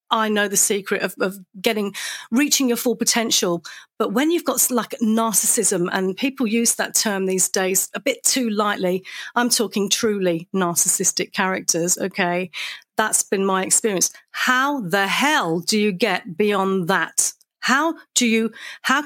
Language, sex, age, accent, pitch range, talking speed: English, female, 40-59, British, 190-240 Hz, 155 wpm